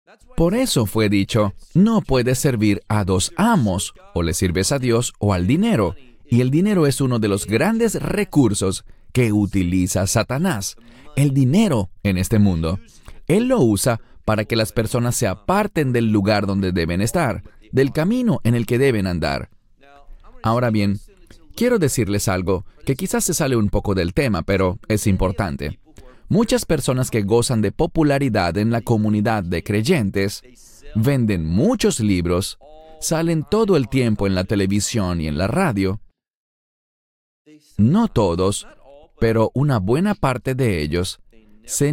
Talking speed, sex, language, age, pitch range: 150 wpm, male, English, 40-59, 100-140 Hz